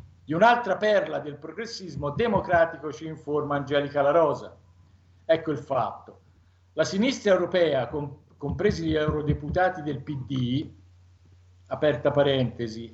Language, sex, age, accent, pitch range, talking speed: Italian, male, 50-69, native, 130-160 Hz, 105 wpm